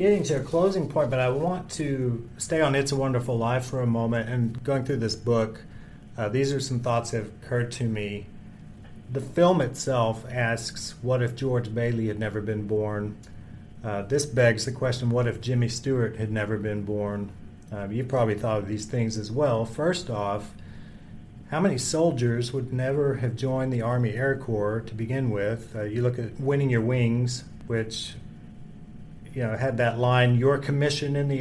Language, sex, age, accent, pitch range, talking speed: English, male, 40-59, American, 115-140 Hz, 190 wpm